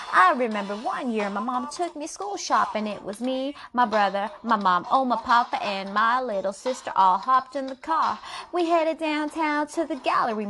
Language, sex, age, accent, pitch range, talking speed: English, female, 30-49, American, 230-355 Hz, 205 wpm